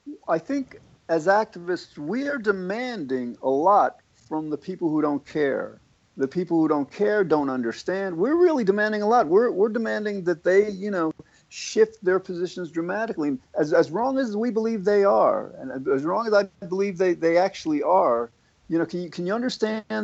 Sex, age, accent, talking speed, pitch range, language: male, 50-69, American, 190 wpm, 155-215 Hz, English